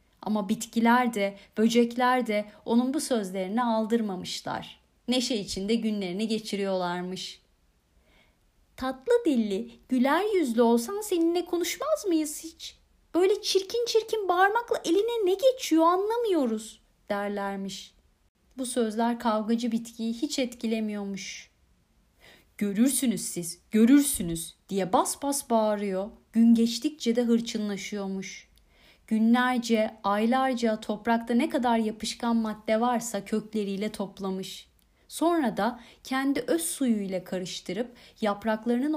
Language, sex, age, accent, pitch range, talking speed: Turkish, female, 30-49, native, 210-285 Hz, 100 wpm